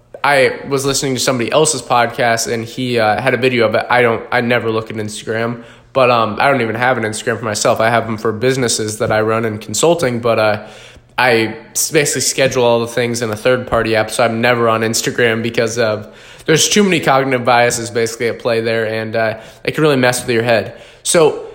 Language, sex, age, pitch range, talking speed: English, male, 20-39, 115-145 Hz, 235 wpm